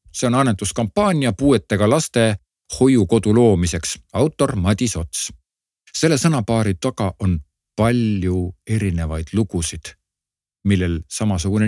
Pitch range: 90-120 Hz